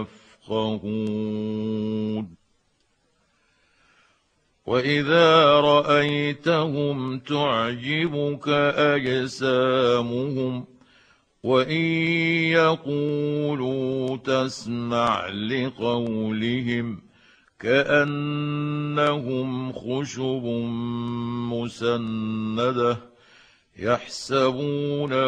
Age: 60-79